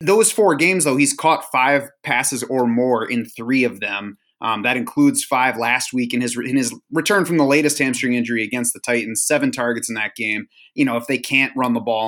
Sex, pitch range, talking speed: male, 125-150 Hz, 235 wpm